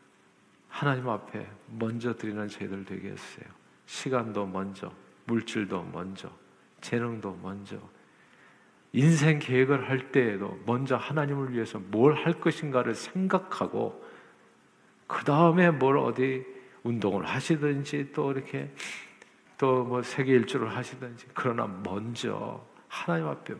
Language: Korean